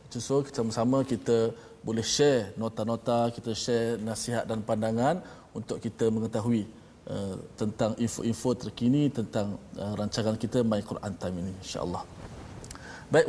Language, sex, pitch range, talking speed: Malayalam, male, 115-135 Hz, 135 wpm